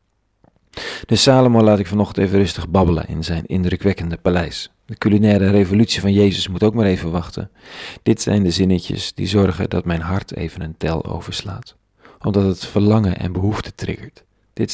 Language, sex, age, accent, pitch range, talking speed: Dutch, male, 40-59, Dutch, 90-105 Hz, 170 wpm